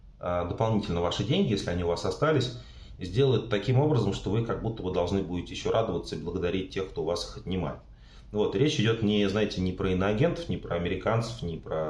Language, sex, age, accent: Russian, male, 30-49, native